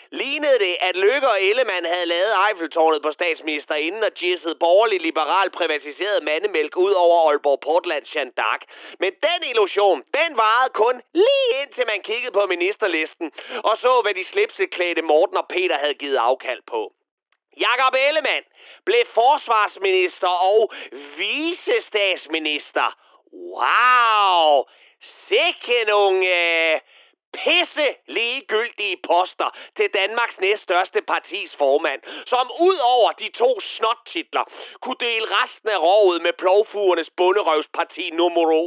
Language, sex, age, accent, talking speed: Danish, male, 30-49, native, 125 wpm